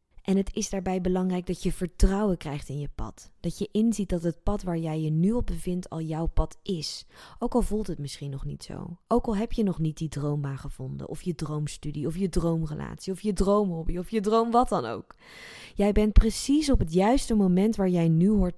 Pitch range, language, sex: 160-200 Hz, Dutch, female